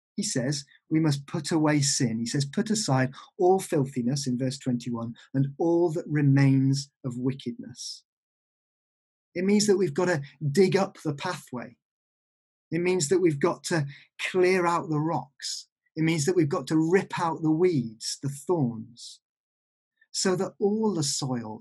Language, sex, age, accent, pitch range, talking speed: English, male, 30-49, British, 130-170 Hz, 165 wpm